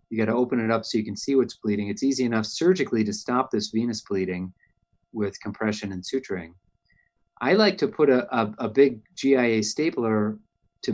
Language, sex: English, male